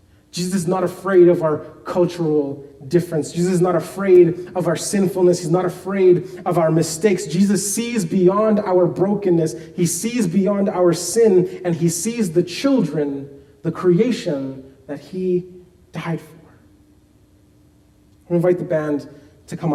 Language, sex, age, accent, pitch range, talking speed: English, male, 30-49, American, 150-185 Hz, 145 wpm